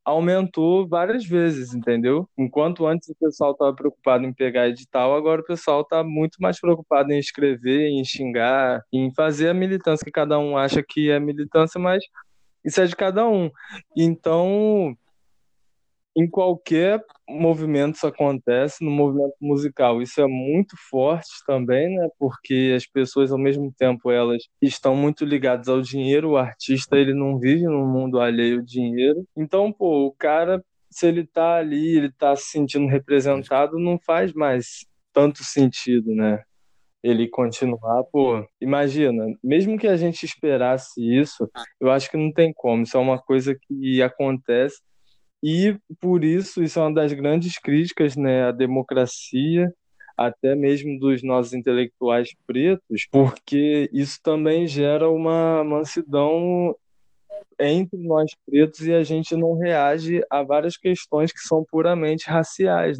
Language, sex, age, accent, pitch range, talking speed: Portuguese, male, 20-39, Brazilian, 130-165 Hz, 150 wpm